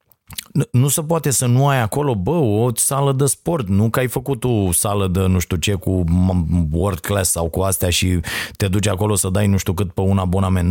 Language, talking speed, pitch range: Romanian, 225 wpm, 110-155 Hz